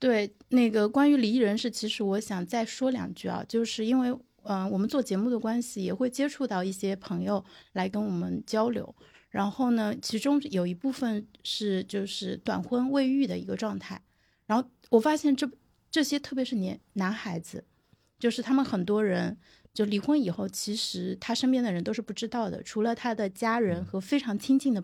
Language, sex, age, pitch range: Chinese, female, 30-49, 200-255 Hz